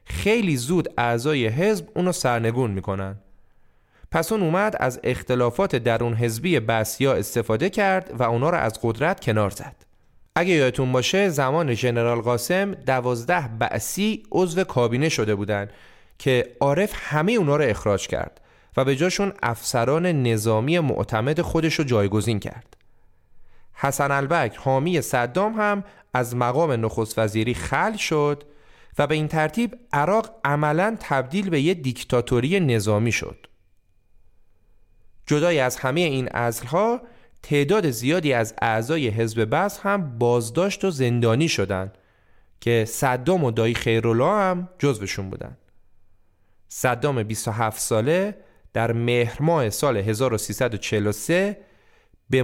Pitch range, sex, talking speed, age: 110-165 Hz, male, 125 wpm, 30-49